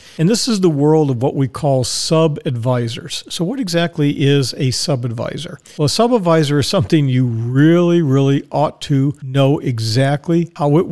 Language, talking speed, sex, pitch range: English, 165 wpm, male, 135-165 Hz